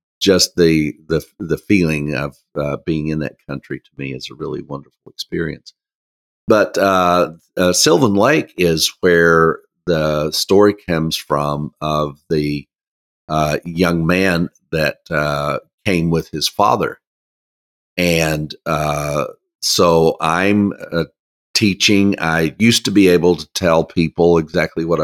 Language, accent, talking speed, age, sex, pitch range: English, American, 135 wpm, 50-69, male, 75-90 Hz